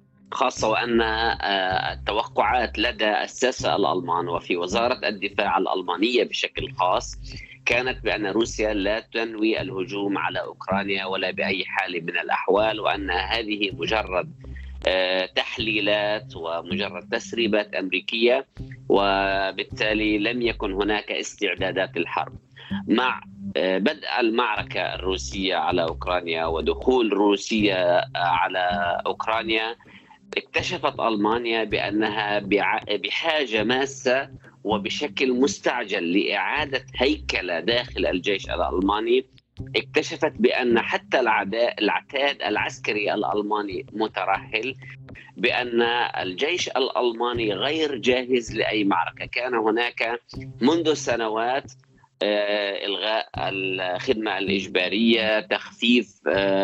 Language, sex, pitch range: Arabic, male, 95-120 Hz